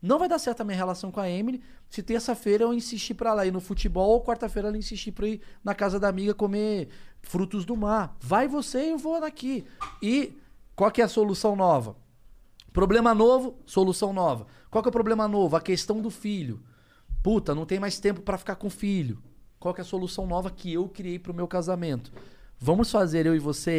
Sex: male